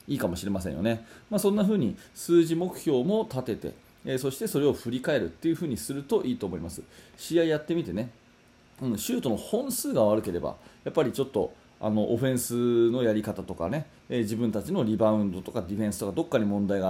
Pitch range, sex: 105-155 Hz, male